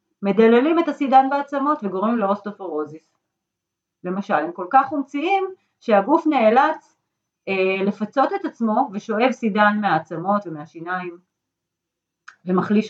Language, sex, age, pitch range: Hebrew, female, 40-59, 185-255 Hz